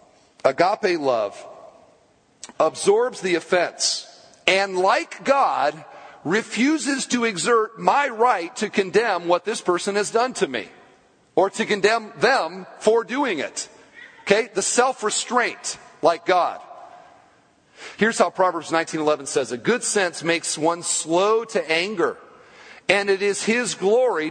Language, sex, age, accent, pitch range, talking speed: English, male, 40-59, American, 165-230 Hz, 130 wpm